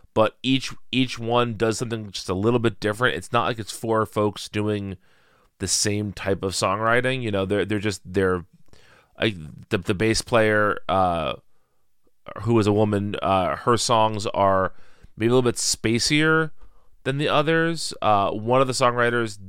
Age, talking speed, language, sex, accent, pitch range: 30-49, 170 wpm, English, male, American, 95-115 Hz